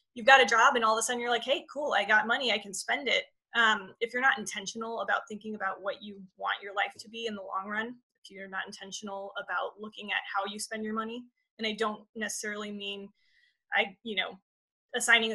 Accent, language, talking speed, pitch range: American, English, 235 wpm, 205-250 Hz